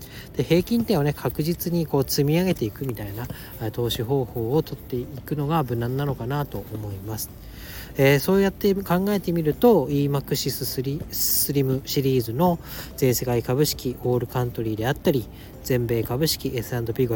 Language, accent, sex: Japanese, native, male